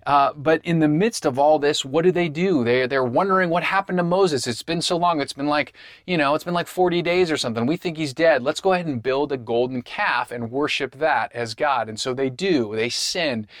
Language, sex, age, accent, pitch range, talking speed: English, male, 30-49, American, 120-155 Hz, 250 wpm